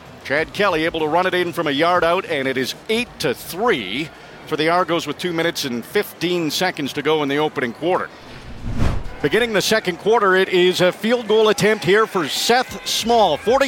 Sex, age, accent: male, 50-69, American